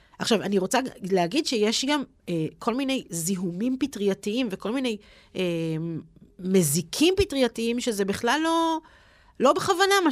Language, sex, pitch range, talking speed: Hebrew, female, 180-245 Hz, 130 wpm